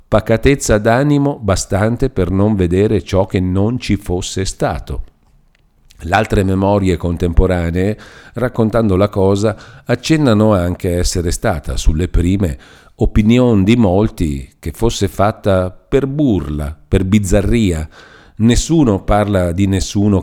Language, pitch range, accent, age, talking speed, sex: Italian, 85-110 Hz, native, 50-69, 120 wpm, male